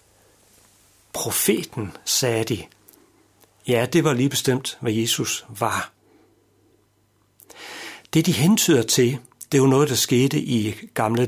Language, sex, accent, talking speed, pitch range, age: Danish, male, native, 120 wpm, 110-150 Hz, 60-79